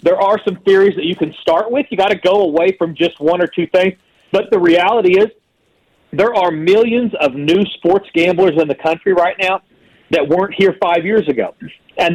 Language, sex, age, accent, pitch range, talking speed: English, male, 40-59, American, 155-195 Hz, 210 wpm